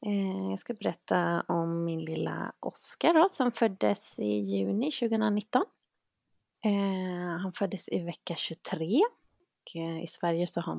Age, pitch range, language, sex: 30-49, 170-230 Hz, Swedish, female